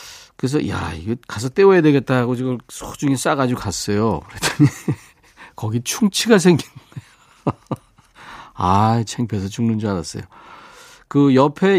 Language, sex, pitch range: Korean, male, 105-160 Hz